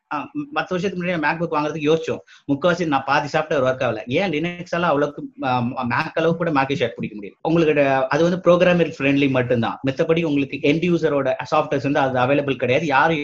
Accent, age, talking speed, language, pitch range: native, 30-49, 145 wpm, Tamil, 125-160 Hz